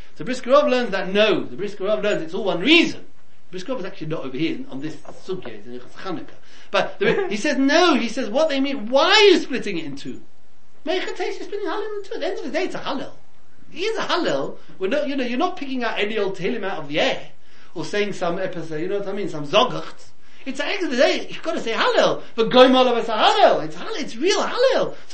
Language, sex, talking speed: English, male, 255 wpm